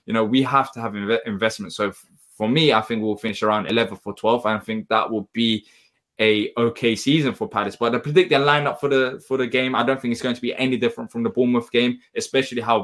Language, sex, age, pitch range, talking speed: English, male, 10-29, 115-135 Hz, 260 wpm